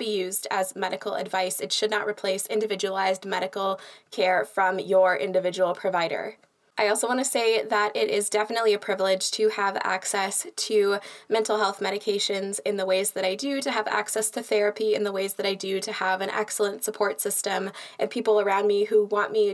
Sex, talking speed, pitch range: female, 195 wpm, 190-215 Hz